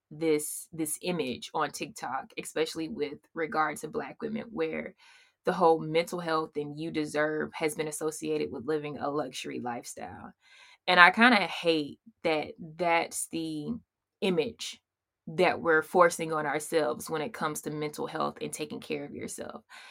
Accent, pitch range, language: American, 155-185 Hz, English